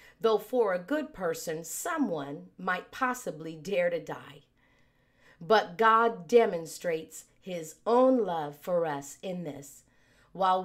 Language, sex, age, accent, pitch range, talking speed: English, female, 40-59, American, 155-220 Hz, 125 wpm